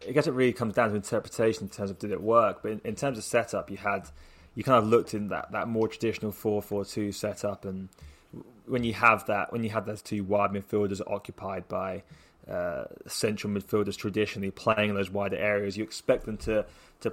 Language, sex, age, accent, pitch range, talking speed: English, male, 20-39, British, 100-110 Hz, 220 wpm